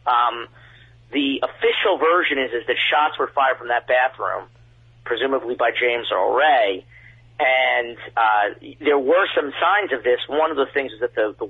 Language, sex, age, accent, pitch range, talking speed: English, male, 40-59, American, 120-140 Hz, 175 wpm